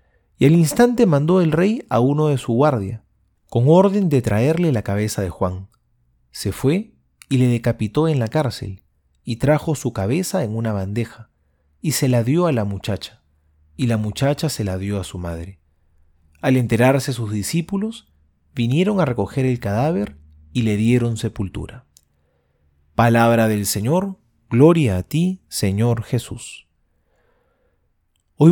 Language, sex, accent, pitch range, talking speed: Spanish, male, Argentinian, 100-155 Hz, 150 wpm